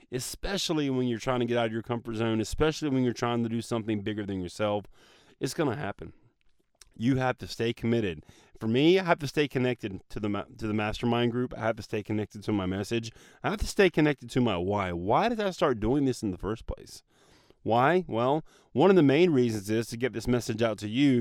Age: 30-49